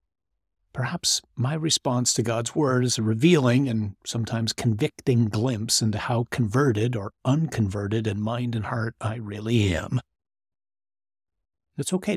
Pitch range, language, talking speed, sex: 105-130 Hz, English, 135 wpm, male